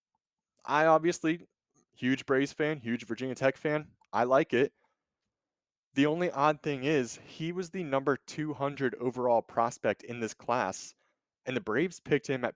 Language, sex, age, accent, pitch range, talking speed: English, male, 20-39, American, 110-145 Hz, 160 wpm